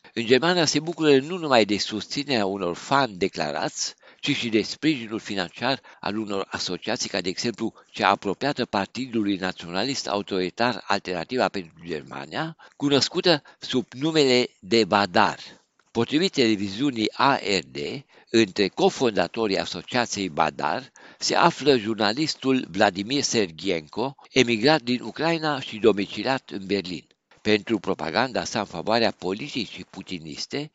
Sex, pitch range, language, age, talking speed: male, 95-130 Hz, Romanian, 60-79, 120 wpm